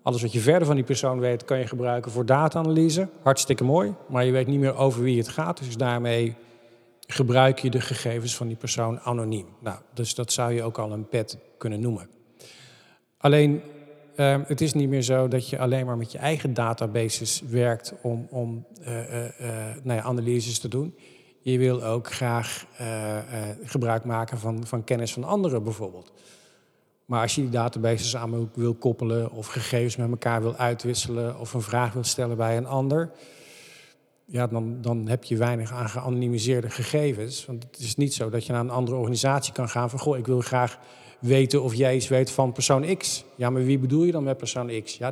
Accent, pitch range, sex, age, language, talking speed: Dutch, 120-135 Hz, male, 50-69, Dutch, 200 wpm